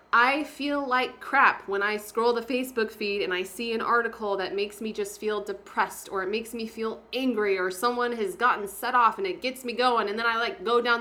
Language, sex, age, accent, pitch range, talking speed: English, female, 20-39, American, 195-250 Hz, 240 wpm